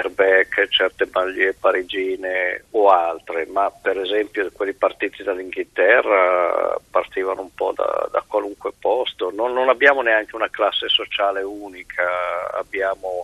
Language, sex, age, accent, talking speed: Italian, male, 50-69, native, 125 wpm